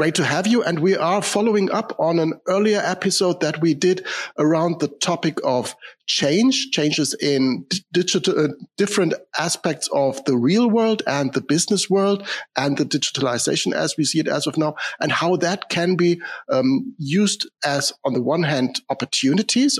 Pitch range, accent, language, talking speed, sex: 140-185 Hz, German, English, 175 wpm, male